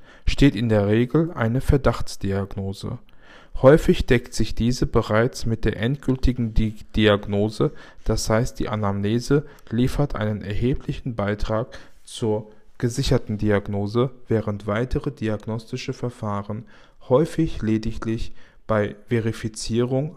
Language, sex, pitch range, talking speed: German, male, 105-125 Hz, 100 wpm